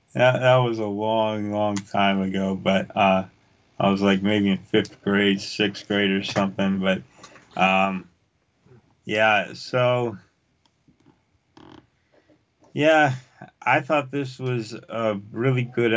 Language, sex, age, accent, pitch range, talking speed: English, male, 30-49, American, 95-115 Hz, 120 wpm